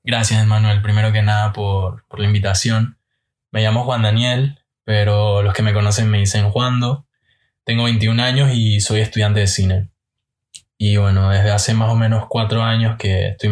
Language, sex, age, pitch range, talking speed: Spanish, male, 20-39, 105-115 Hz, 180 wpm